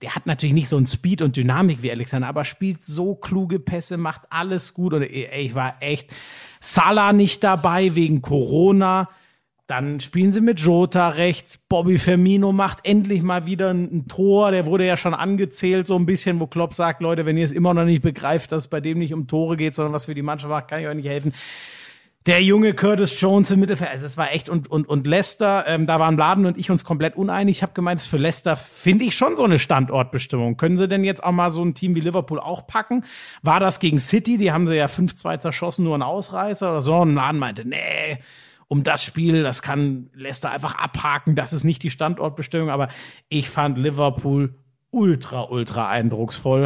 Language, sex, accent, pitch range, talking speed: German, male, German, 140-180 Hz, 215 wpm